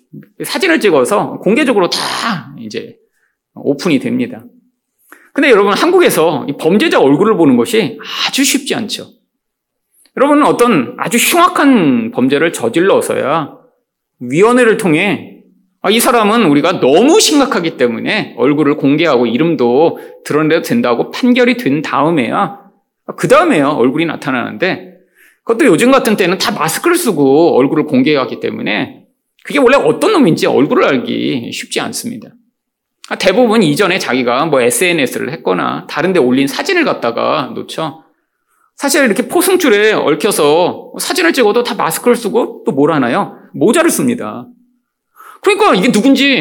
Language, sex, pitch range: Korean, male, 240-350 Hz